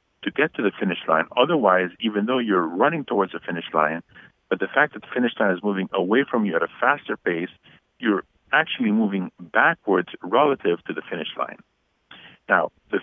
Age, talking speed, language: 50-69, 195 wpm, English